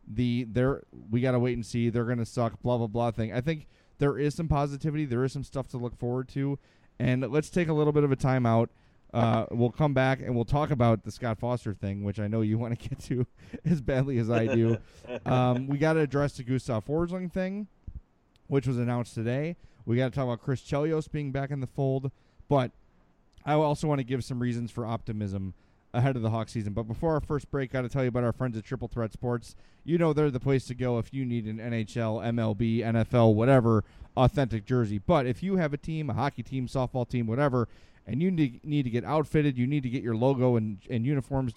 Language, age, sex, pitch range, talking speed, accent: English, 30-49, male, 115-140 Hz, 235 wpm, American